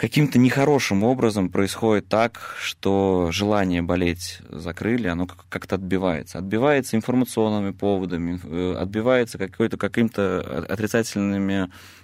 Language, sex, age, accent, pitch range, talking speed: Russian, male, 20-39, native, 90-105 Hz, 95 wpm